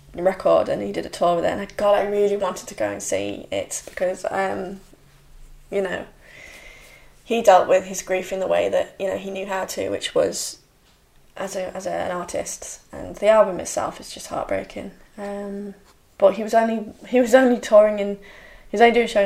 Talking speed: 210 wpm